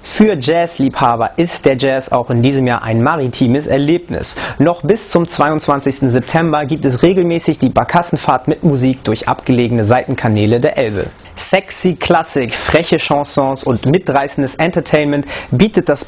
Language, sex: German, male